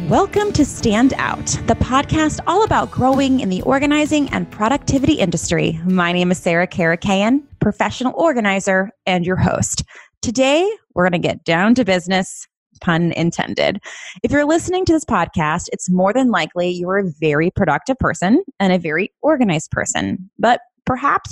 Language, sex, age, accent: English, female, 20-39, American